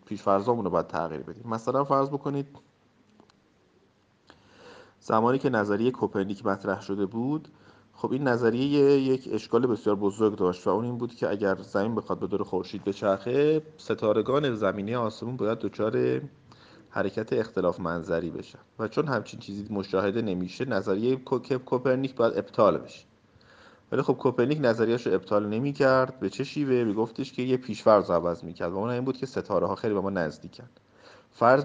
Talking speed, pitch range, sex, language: 155 wpm, 100-130 Hz, male, Persian